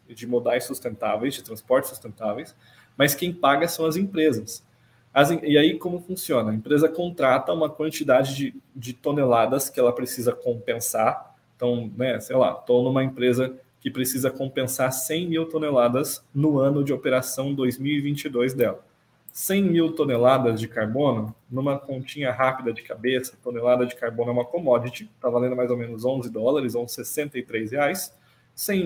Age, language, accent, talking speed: 20-39, Portuguese, Brazilian, 160 wpm